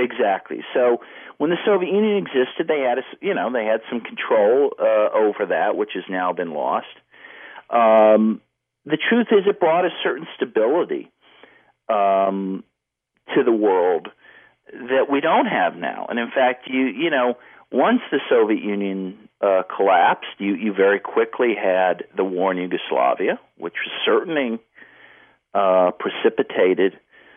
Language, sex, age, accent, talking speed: English, male, 50-69, American, 150 wpm